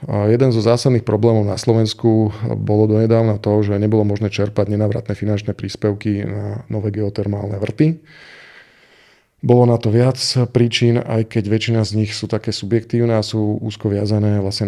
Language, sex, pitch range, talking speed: Slovak, male, 105-120 Hz, 165 wpm